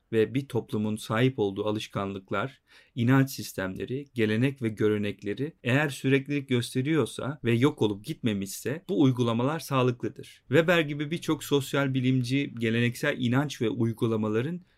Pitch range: 110-135 Hz